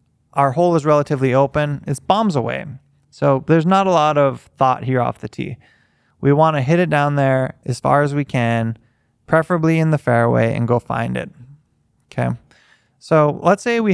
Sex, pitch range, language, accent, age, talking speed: male, 125-160 Hz, English, American, 20-39, 185 wpm